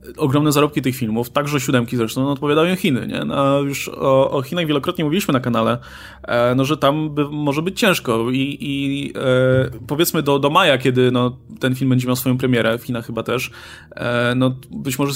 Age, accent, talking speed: 20-39, native, 200 wpm